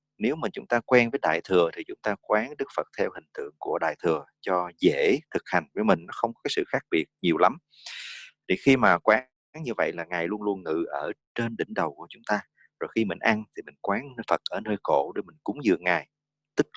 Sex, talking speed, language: male, 245 wpm, English